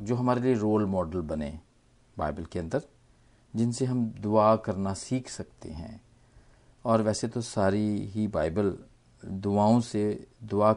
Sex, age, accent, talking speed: male, 50-69, native, 140 wpm